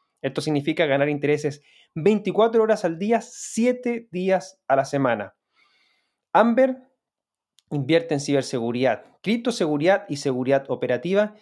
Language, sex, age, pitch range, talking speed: Spanish, male, 20-39, 145-210 Hz, 110 wpm